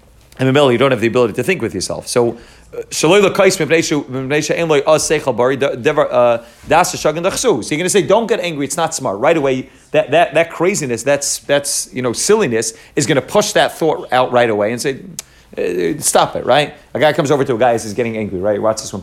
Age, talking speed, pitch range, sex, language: 30-49, 200 wpm, 120-155 Hz, male, English